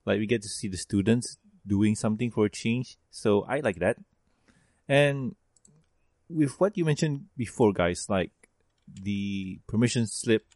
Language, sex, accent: English, male, Malaysian